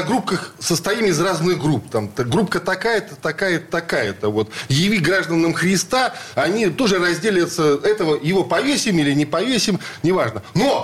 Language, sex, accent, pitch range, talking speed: Russian, male, native, 155-215 Hz, 140 wpm